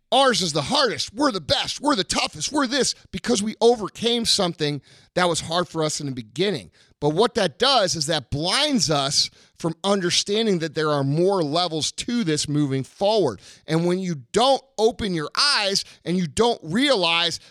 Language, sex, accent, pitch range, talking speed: English, male, American, 155-230 Hz, 185 wpm